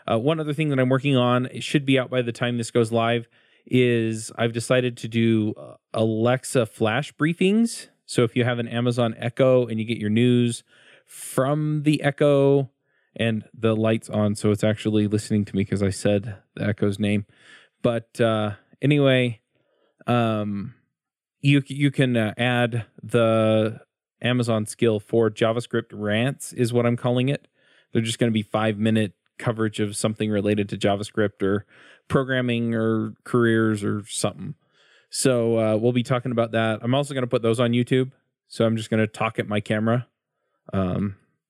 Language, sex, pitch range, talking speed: English, male, 110-125 Hz, 175 wpm